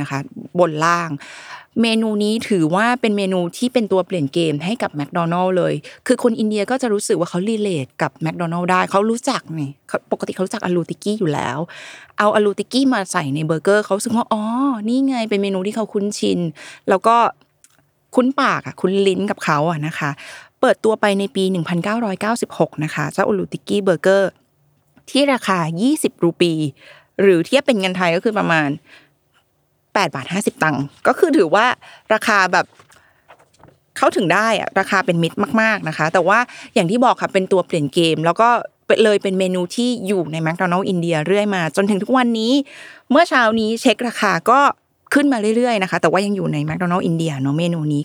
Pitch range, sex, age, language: 170-220 Hz, female, 20-39, Thai